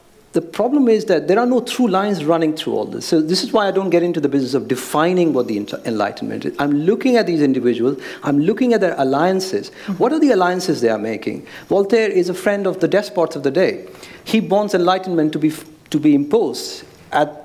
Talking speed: 225 wpm